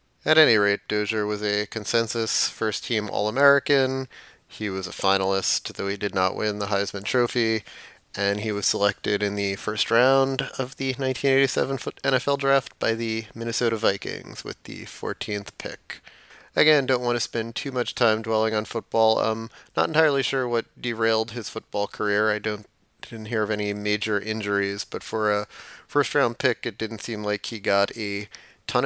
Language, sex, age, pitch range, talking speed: English, male, 30-49, 105-120 Hz, 175 wpm